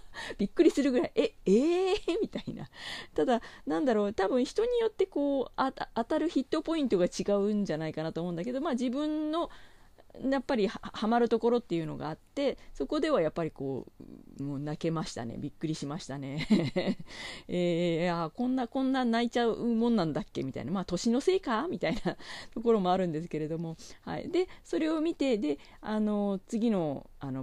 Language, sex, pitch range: Japanese, female, 155-260 Hz